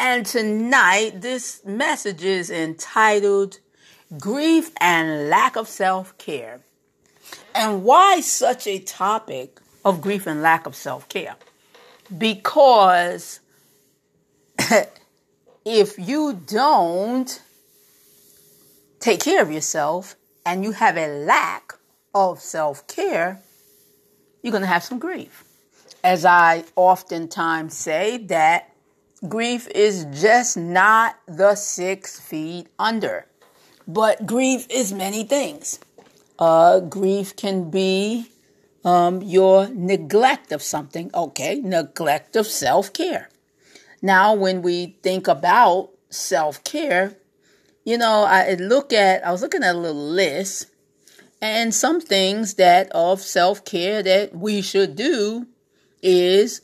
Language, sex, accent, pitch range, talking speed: English, female, American, 175-220 Hz, 110 wpm